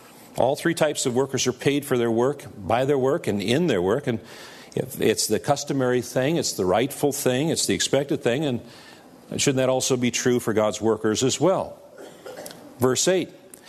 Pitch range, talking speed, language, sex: 115-150 Hz, 190 wpm, English, male